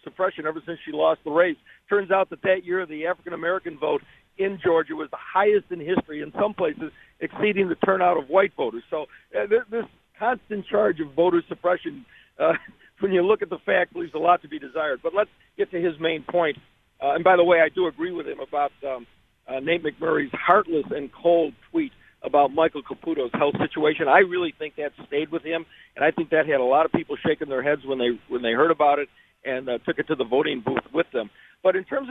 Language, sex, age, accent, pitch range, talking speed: English, male, 50-69, American, 155-195 Hz, 230 wpm